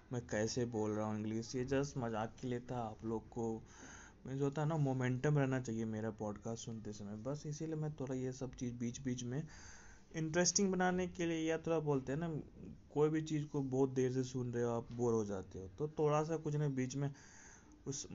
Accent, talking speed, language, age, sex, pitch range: native, 225 wpm, Hindi, 20-39, male, 110-145 Hz